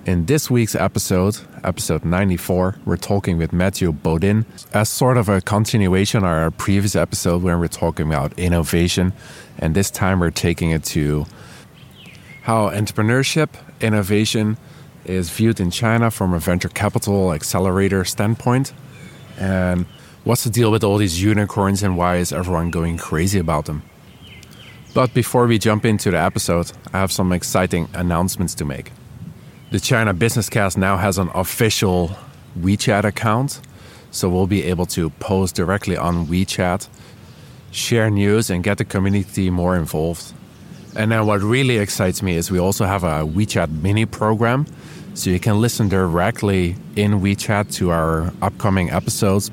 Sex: male